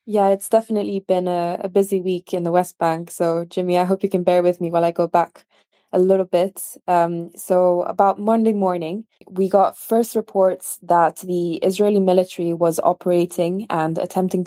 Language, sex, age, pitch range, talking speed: English, female, 20-39, 170-195 Hz, 185 wpm